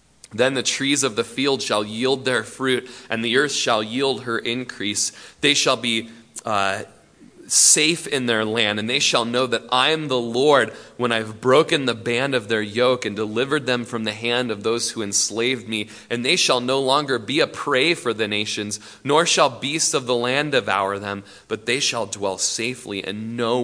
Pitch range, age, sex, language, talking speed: 110-140 Hz, 20-39, male, English, 200 wpm